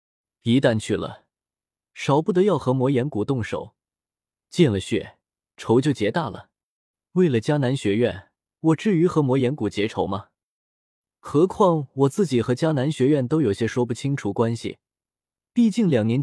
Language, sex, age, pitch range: Chinese, male, 20-39, 115-160 Hz